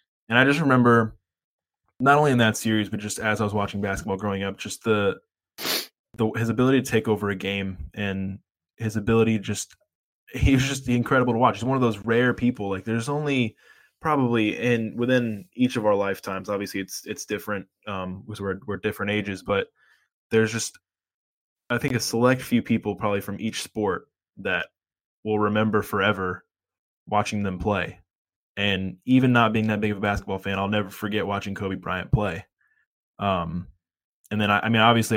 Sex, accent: male, American